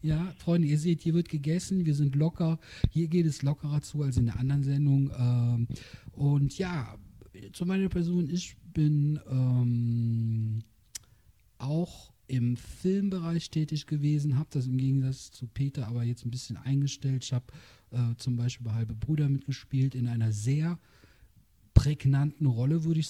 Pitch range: 125-160 Hz